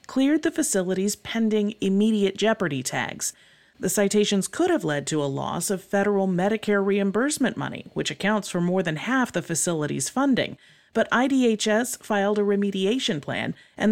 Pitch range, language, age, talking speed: 170-225 Hz, English, 40-59, 155 wpm